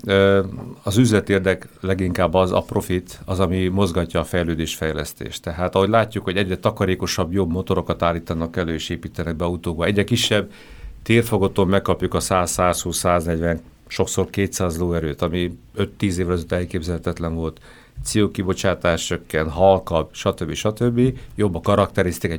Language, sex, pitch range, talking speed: Hungarian, male, 90-110 Hz, 130 wpm